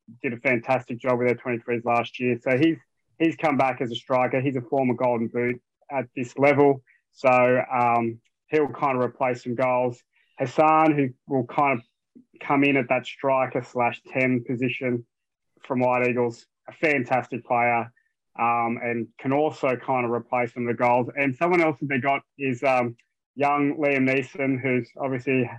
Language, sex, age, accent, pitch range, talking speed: English, male, 20-39, Australian, 125-140 Hz, 180 wpm